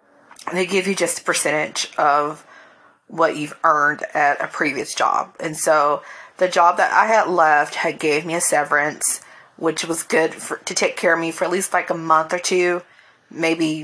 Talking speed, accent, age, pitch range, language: 190 wpm, American, 30-49, 155-180 Hz, English